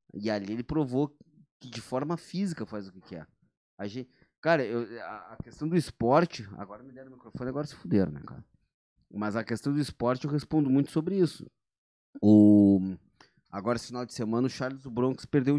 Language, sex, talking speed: Portuguese, male, 200 wpm